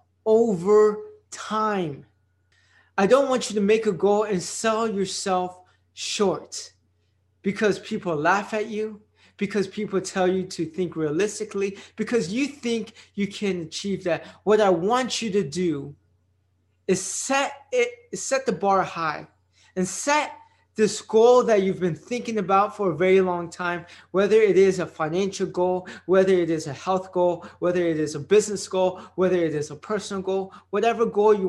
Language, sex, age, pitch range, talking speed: English, male, 20-39, 170-215 Hz, 165 wpm